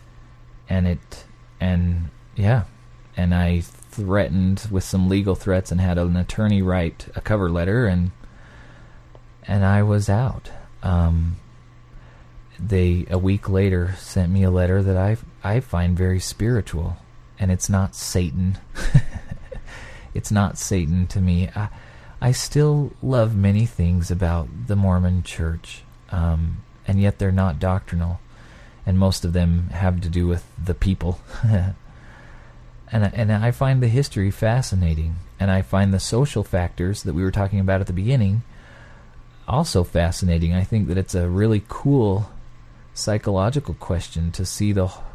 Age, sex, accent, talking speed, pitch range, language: 30-49, male, American, 145 wpm, 90-115 Hz, English